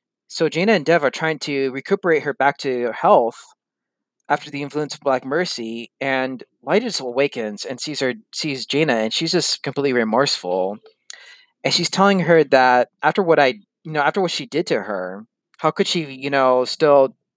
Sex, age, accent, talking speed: male, 20-39, American, 185 wpm